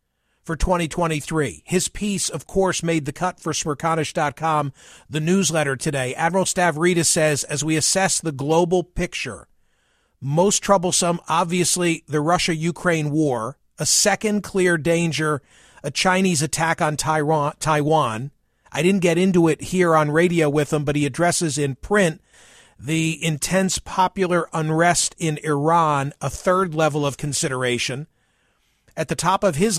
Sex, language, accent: male, English, American